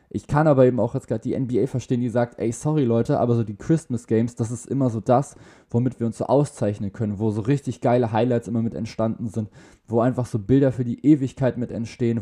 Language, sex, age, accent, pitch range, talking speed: German, male, 20-39, German, 110-135 Hz, 240 wpm